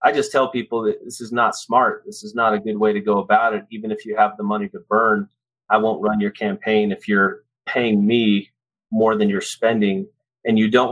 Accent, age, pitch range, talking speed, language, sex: American, 30-49, 105-135 Hz, 235 wpm, English, male